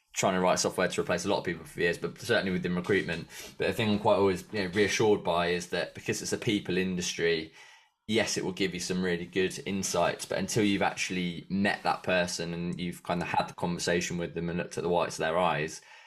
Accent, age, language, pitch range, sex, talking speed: British, 20-39, English, 85-90 Hz, male, 240 wpm